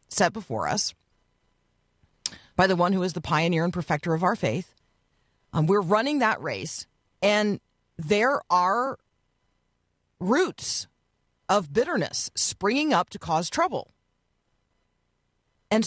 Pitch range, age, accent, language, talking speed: 145-210 Hz, 40-59, American, English, 120 wpm